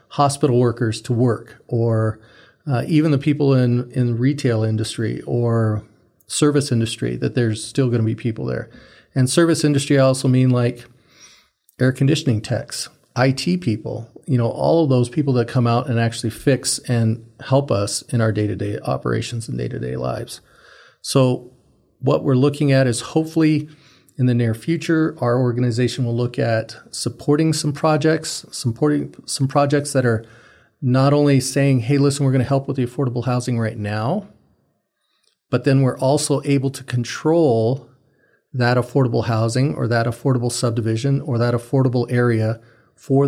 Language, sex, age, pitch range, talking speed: English, male, 40-59, 115-140 Hz, 160 wpm